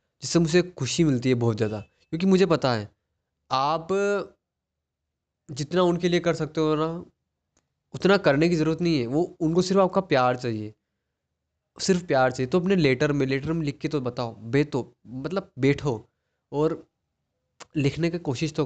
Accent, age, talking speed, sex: native, 20-39, 165 wpm, male